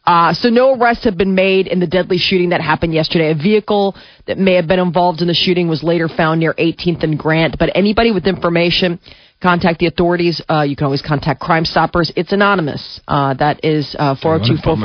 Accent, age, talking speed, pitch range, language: American, 30-49, 205 wpm, 155-195 Hz, English